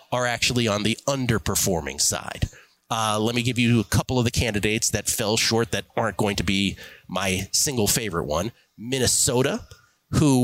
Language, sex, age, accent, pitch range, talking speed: English, male, 30-49, American, 110-150 Hz, 170 wpm